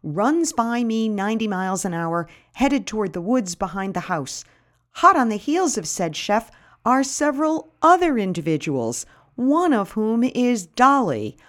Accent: American